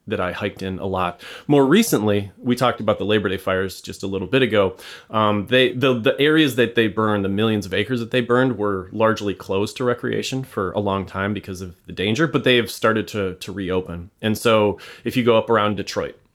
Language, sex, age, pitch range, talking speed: English, male, 30-49, 95-120 Hz, 230 wpm